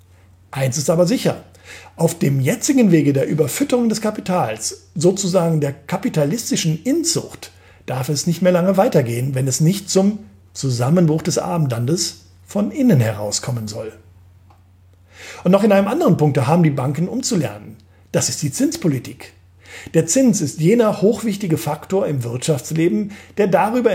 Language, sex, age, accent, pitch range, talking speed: German, male, 50-69, German, 120-200 Hz, 145 wpm